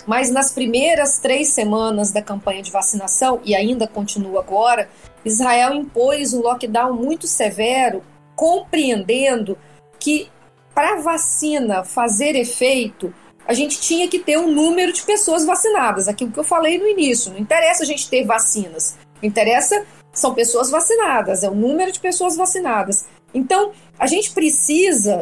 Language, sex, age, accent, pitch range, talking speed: Portuguese, female, 40-59, Brazilian, 220-330 Hz, 150 wpm